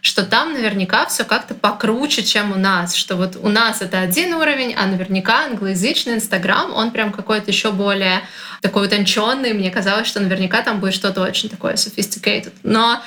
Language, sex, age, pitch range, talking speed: Russian, female, 20-39, 195-230 Hz, 175 wpm